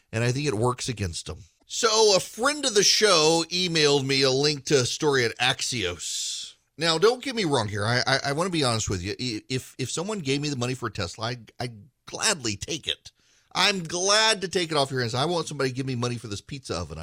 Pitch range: 110-145 Hz